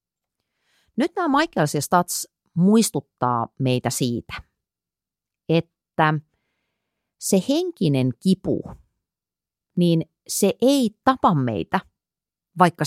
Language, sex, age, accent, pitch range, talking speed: Finnish, female, 30-49, native, 125-160 Hz, 80 wpm